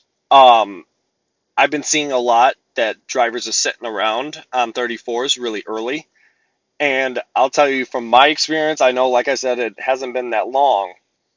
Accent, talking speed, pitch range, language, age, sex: American, 170 wpm, 120-145 Hz, English, 20-39, male